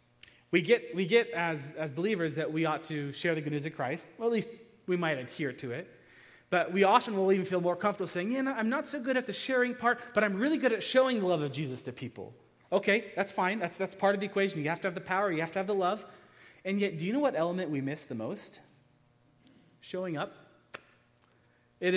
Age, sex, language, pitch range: 30-49, male, English, 150-200 Hz